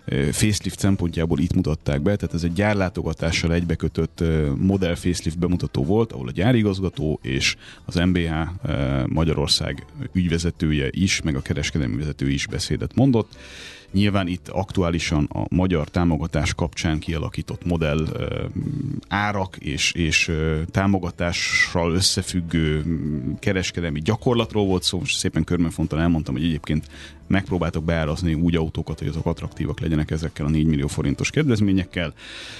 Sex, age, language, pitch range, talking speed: male, 30-49, Hungarian, 80-95 Hz, 125 wpm